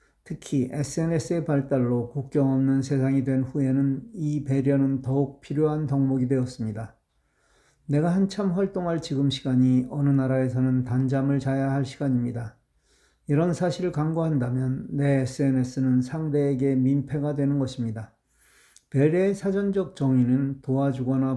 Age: 40-59